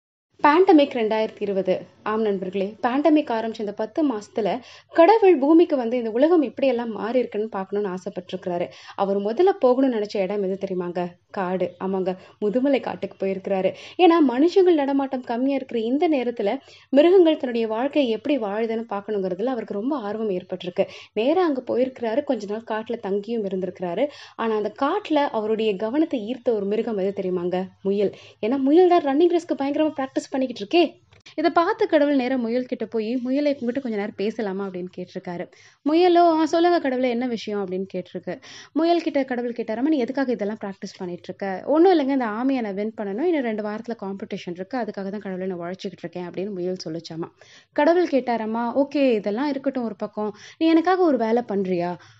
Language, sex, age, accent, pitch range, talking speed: Tamil, female, 20-39, native, 200-280 Hz, 100 wpm